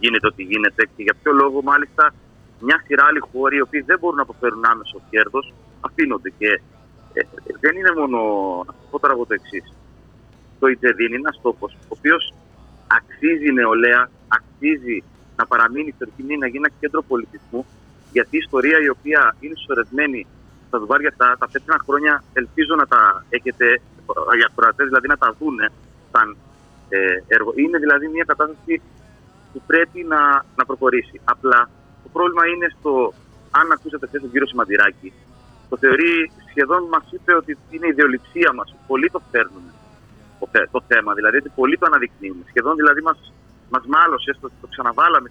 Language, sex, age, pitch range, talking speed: Greek, male, 30-49, 125-170 Hz, 165 wpm